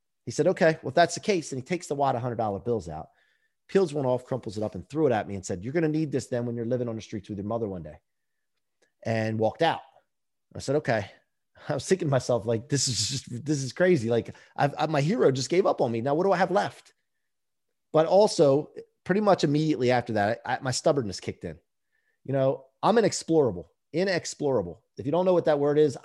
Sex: male